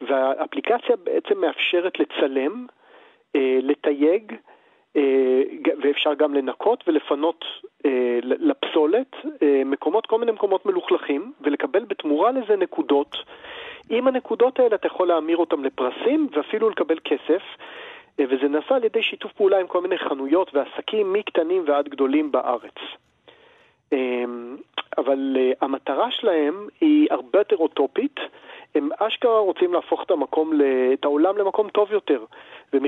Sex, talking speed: male, 130 wpm